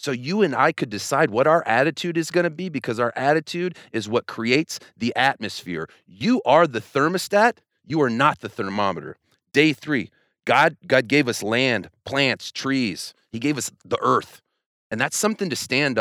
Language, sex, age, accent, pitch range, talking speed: English, male, 30-49, American, 115-185 Hz, 180 wpm